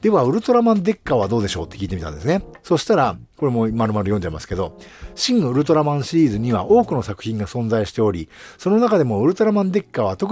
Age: 50-69